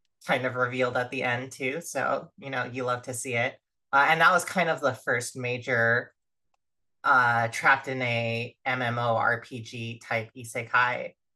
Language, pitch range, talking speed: English, 115-135 Hz, 165 wpm